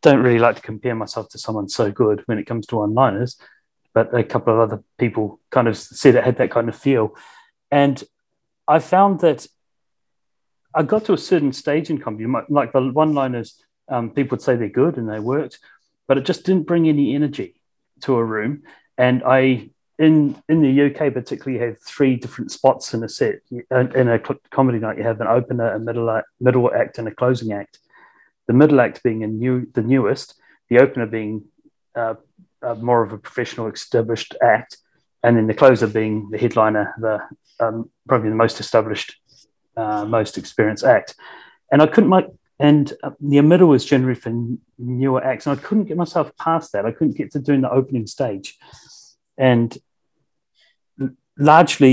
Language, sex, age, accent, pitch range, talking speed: English, male, 30-49, British, 115-145 Hz, 185 wpm